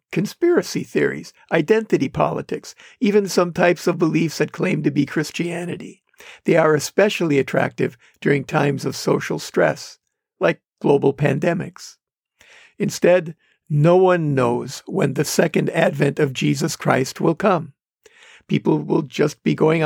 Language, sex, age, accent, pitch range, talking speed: English, male, 60-79, American, 150-190 Hz, 135 wpm